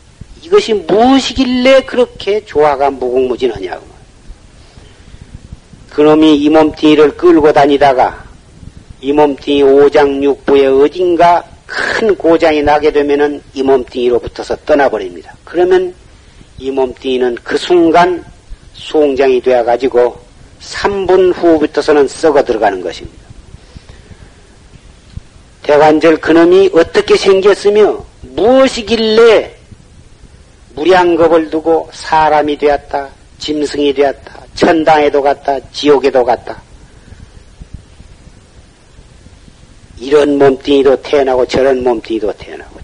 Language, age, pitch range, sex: Korean, 40-59, 140-200 Hz, male